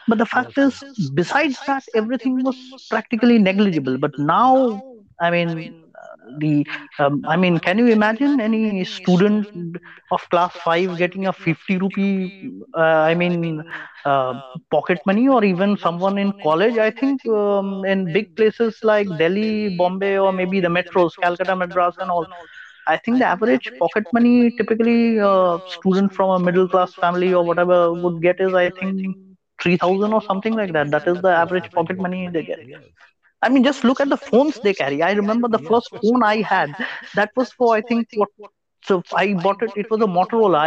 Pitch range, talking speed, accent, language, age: 175-220 Hz, 180 wpm, native, Hindi, 30-49